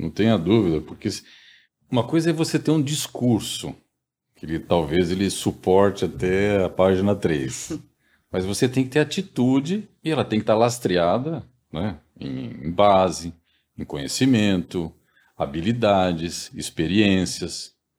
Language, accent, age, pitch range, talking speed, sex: Portuguese, Brazilian, 50-69, 85-135 Hz, 130 wpm, male